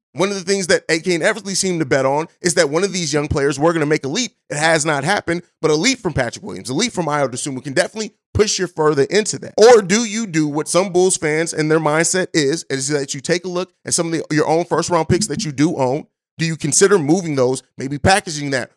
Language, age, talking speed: English, 30-49, 275 wpm